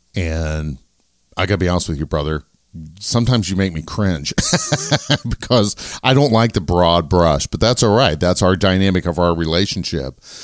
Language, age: English, 50-69